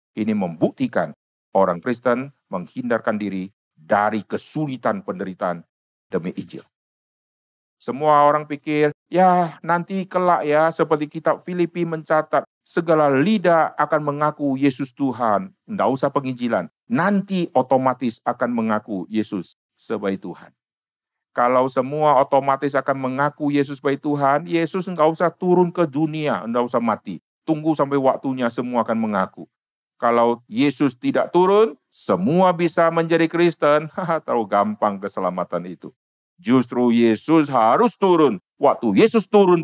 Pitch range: 105-155 Hz